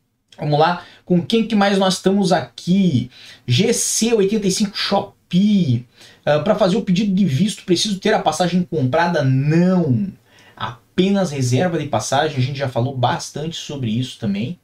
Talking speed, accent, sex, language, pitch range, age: 145 wpm, Brazilian, male, Portuguese, 140-185 Hz, 20-39